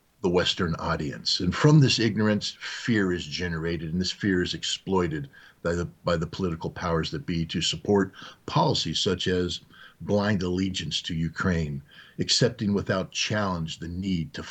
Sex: male